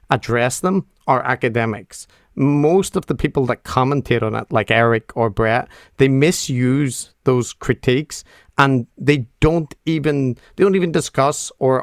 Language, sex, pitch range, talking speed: English, male, 115-140 Hz, 145 wpm